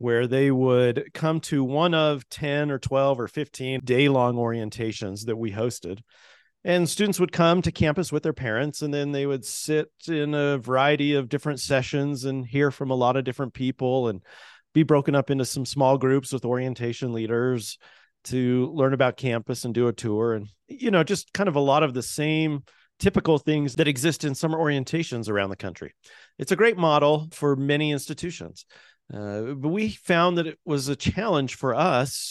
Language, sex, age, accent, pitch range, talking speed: English, male, 40-59, American, 120-150 Hz, 190 wpm